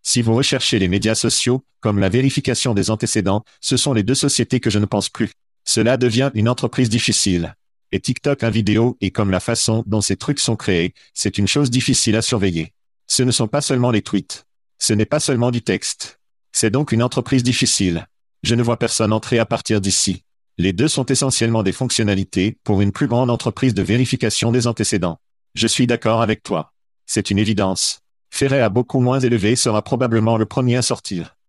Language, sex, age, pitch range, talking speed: French, male, 50-69, 105-125 Hz, 200 wpm